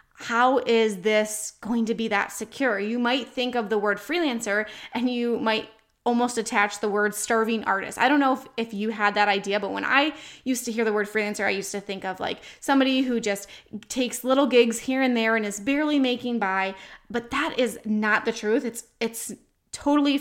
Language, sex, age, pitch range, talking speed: English, female, 20-39, 210-250 Hz, 210 wpm